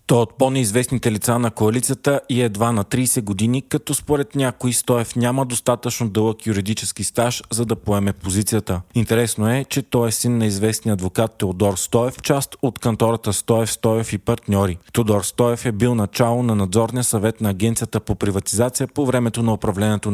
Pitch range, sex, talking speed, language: 105-125 Hz, male, 175 wpm, Bulgarian